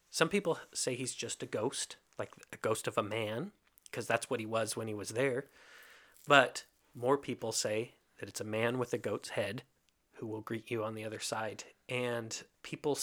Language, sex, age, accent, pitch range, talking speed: English, male, 30-49, American, 110-130 Hz, 205 wpm